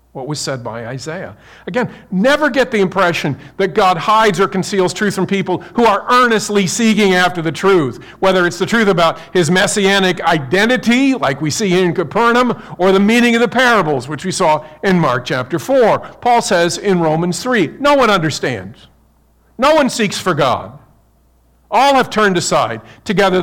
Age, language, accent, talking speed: 50-69, English, American, 175 wpm